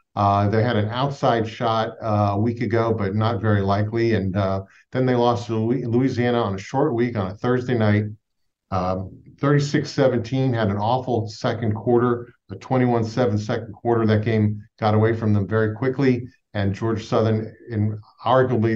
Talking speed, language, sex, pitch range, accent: 175 wpm, English, male, 105-120 Hz, American